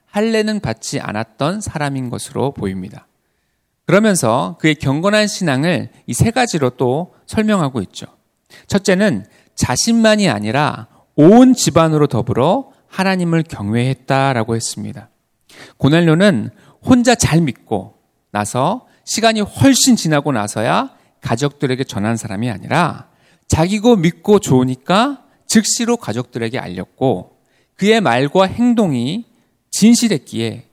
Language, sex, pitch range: Korean, male, 125-190 Hz